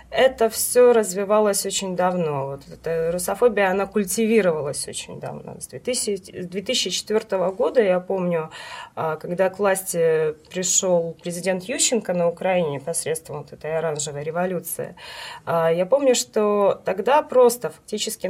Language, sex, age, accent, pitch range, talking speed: Russian, female, 20-39, native, 175-230 Hz, 120 wpm